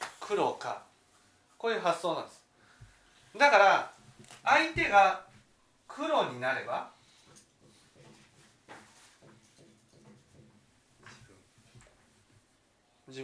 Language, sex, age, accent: Japanese, male, 40-59, native